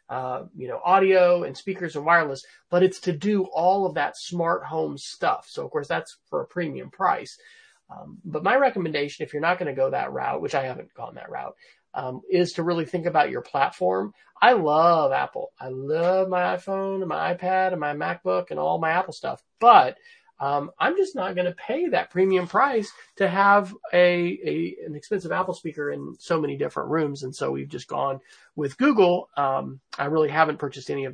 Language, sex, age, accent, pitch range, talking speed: English, male, 30-49, American, 140-195 Hz, 210 wpm